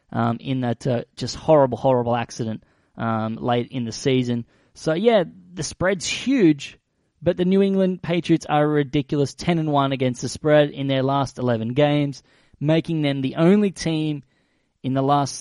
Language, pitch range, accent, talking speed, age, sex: English, 125-150 Hz, Australian, 170 wpm, 20-39, male